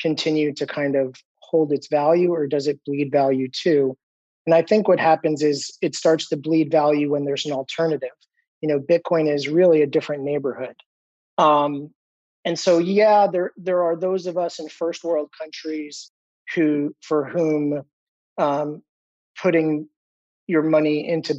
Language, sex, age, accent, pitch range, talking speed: English, male, 30-49, American, 145-165 Hz, 165 wpm